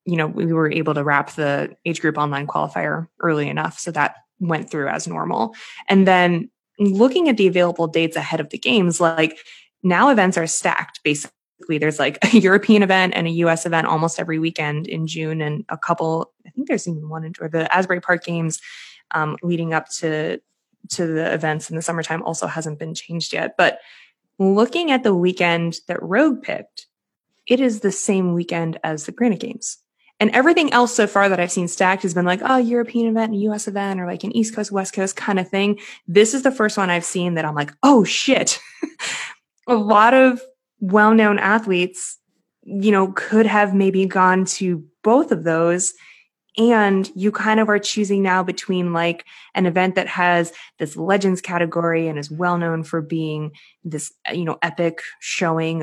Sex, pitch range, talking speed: female, 165-210 Hz, 190 wpm